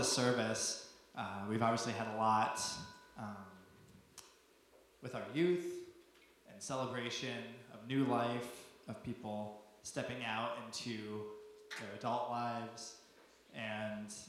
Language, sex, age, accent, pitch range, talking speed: English, male, 20-39, American, 110-130 Hz, 105 wpm